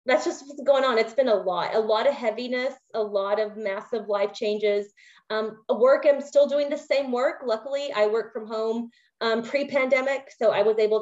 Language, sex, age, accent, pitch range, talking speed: English, female, 30-49, American, 205-265 Hz, 205 wpm